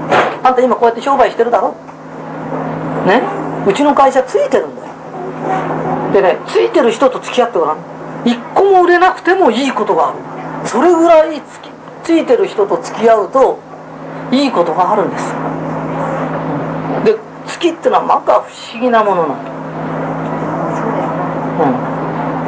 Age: 40-59